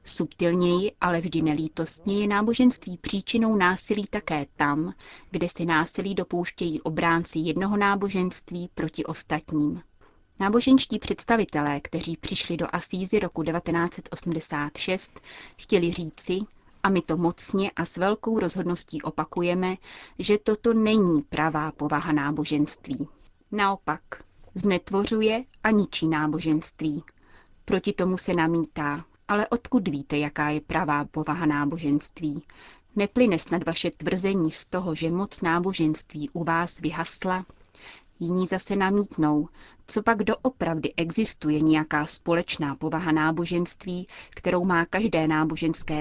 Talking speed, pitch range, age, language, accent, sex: 115 wpm, 155-195 Hz, 30-49, Czech, native, female